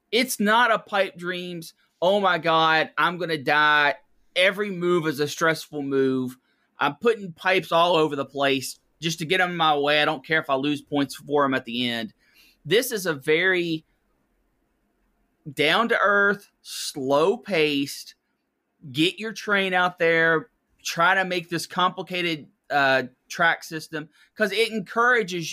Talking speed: 155 wpm